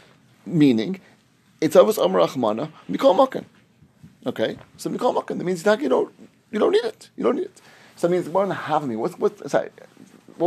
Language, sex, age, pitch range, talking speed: English, male, 30-49, 150-215 Hz, 180 wpm